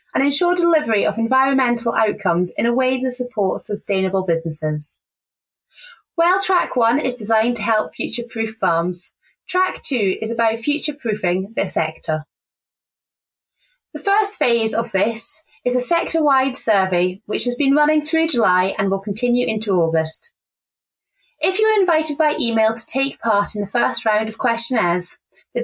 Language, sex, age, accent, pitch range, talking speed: English, female, 30-49, British, 190-280 Hz, 150 wpm